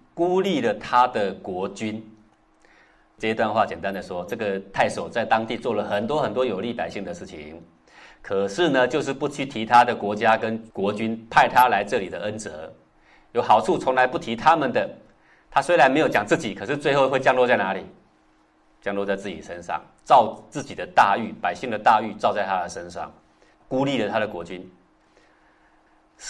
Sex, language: male, Chinese